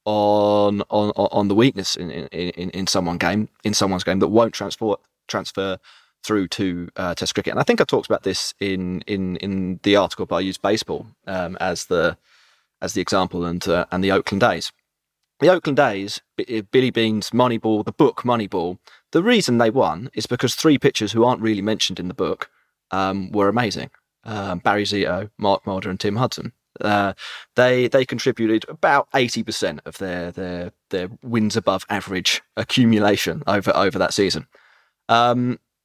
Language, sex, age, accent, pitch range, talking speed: English, male, 30-49, British, 95-120 Hz, 180 wpm